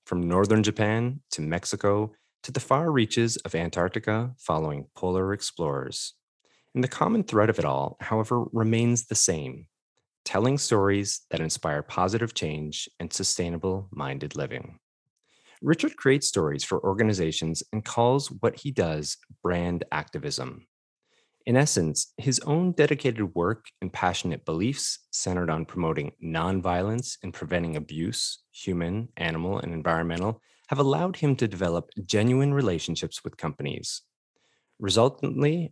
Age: 30-49